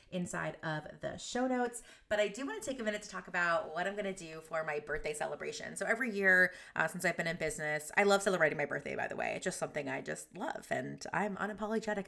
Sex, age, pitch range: female, 30-49, 160-215 Hz